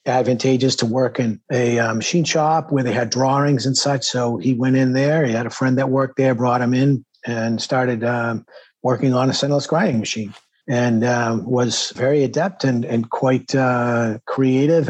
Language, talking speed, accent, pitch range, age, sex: English, 195 wpm, American, 120-135 Hz, 50-69, male